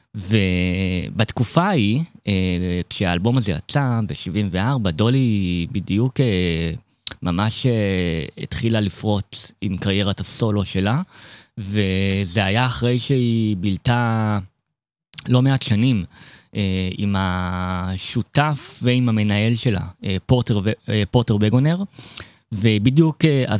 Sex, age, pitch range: male, 20-39, 95-125 Hz